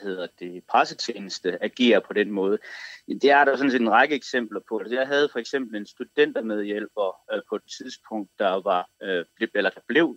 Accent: native